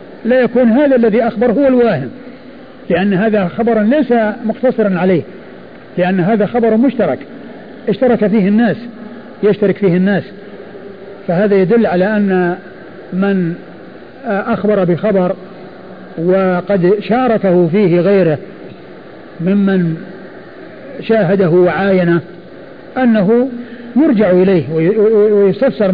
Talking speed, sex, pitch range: 95 wpm, male, 190-235 Hz